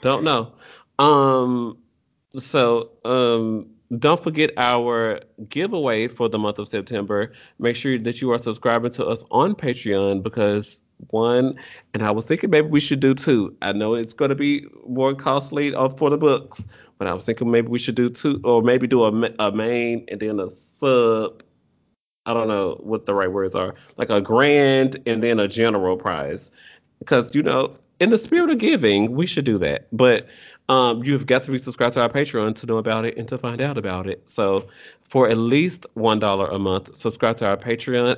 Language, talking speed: English, 195 wpm